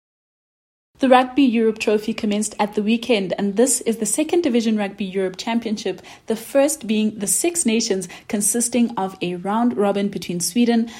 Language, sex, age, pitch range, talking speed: English, female, 20-39, 210-275 Hz, 165 wpm